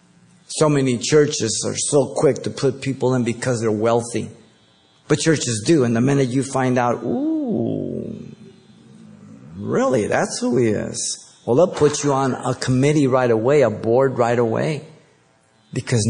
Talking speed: 155 wpm